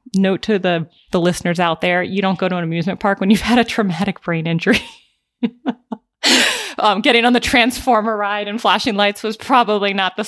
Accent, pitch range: American, 165-210 Hz